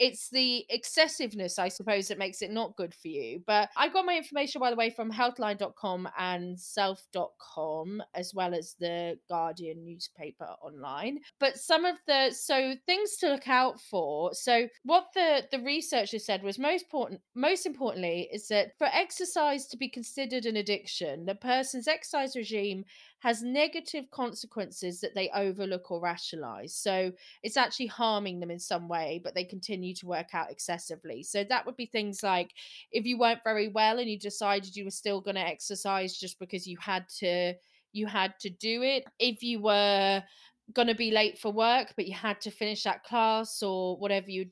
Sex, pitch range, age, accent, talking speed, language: female, 190-250 Hz, 20-39, British, 185 wpm, English